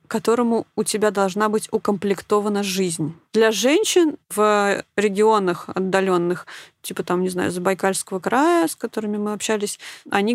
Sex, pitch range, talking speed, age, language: female, 190-230 Hz, 140 wpm, 20-39, Russian